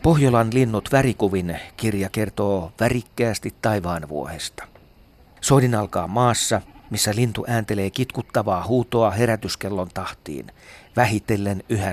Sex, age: male, 40-59